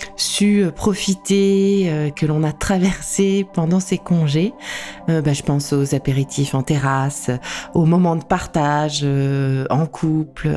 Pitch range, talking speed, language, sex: 155-205 Hz, 140 wpm, French, female